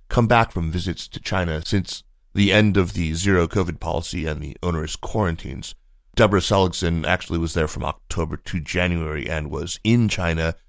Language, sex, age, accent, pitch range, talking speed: English, male, 30-49, American, 80-100 Hz, 170 wpm